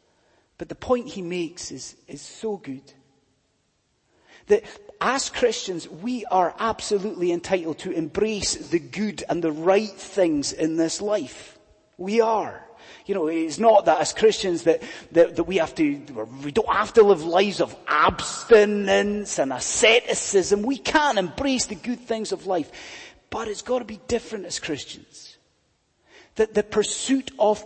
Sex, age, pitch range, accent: male, 30-49, 185-250 Hz, British